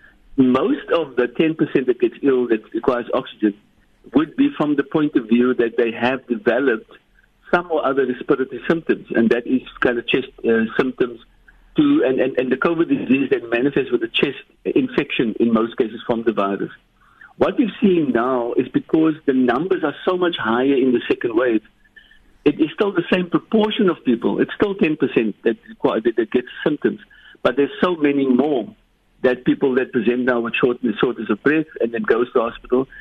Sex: male